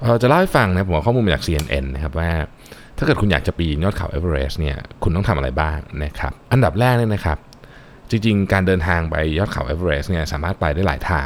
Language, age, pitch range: Thai, 20-39, 75-100 Hz